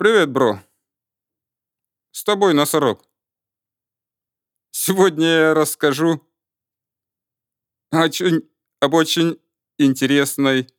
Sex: male